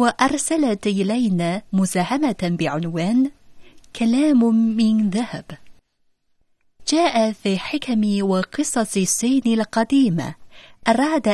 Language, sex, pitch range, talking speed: Arabic, female, 185-255 Hz, 75 wpm